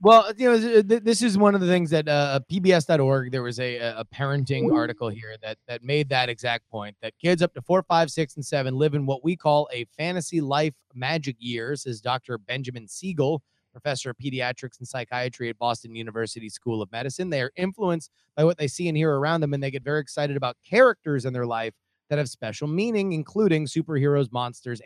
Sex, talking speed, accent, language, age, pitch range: male, 210 wpm, American, English, 30-49, 125-165 Hz